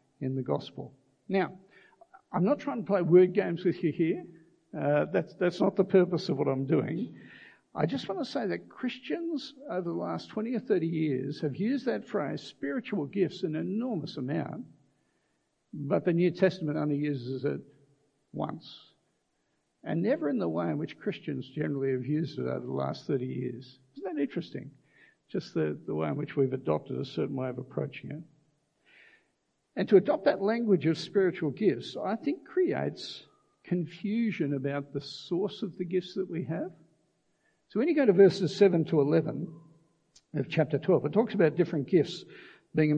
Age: 60-79